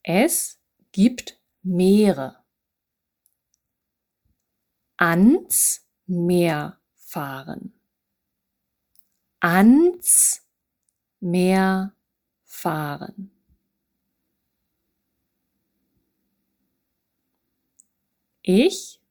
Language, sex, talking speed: English, female, 30 wpm